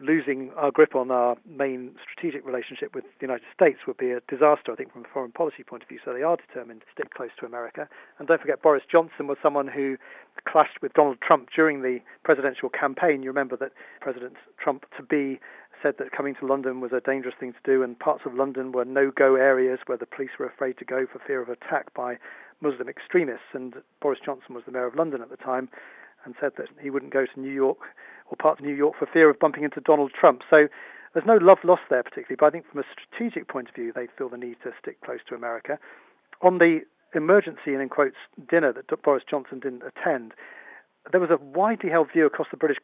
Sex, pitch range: male, 130-165 Hz